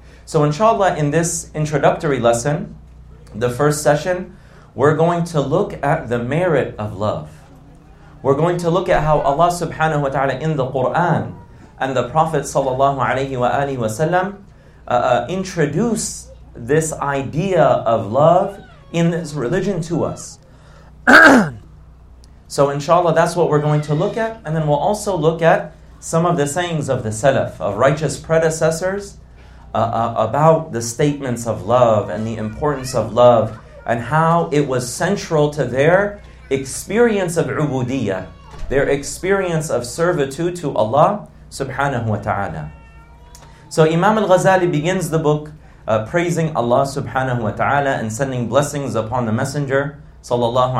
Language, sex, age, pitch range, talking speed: English, male, 40-59, 120-170 Hz, 150 wpm